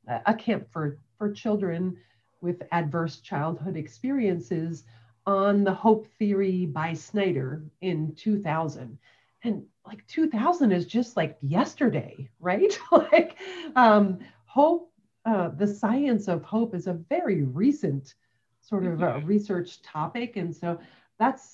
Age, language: 40-59, English